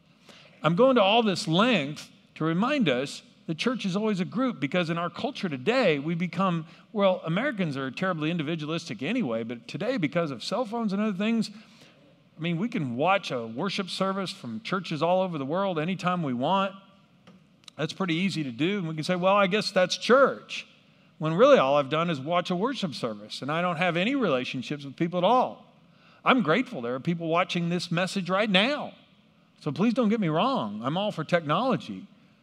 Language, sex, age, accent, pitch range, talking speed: English, male, 50-69, American, 160-210 Hz, 200 wpm